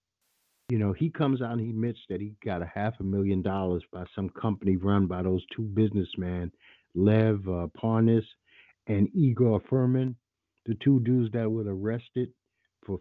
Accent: American